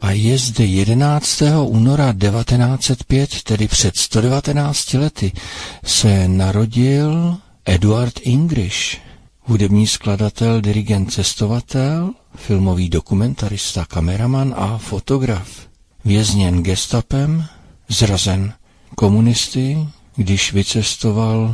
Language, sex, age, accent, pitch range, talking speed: Czech, male, 60-79, native, 95-120 Hz, 80 wpm